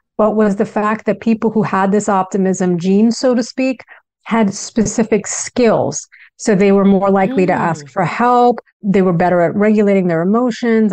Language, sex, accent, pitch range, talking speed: English, female, American, 185-225 Hz, 180 wpm